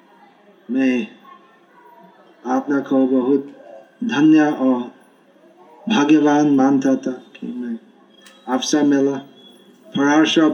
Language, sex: Hindi, male